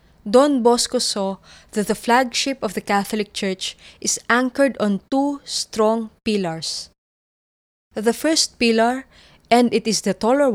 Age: 20-39